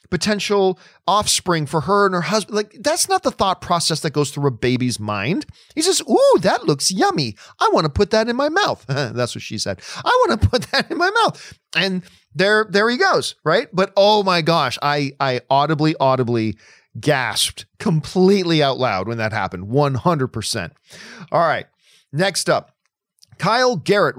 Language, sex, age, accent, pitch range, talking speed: English, male, 40-59, American, 135-185 Hz, 180 wpm